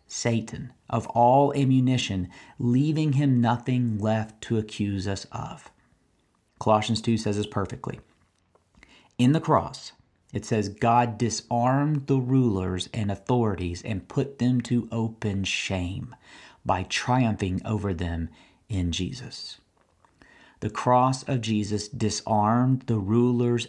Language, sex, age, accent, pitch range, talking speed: English, male, 40-59, American, 100-125 Hz, 120 wpm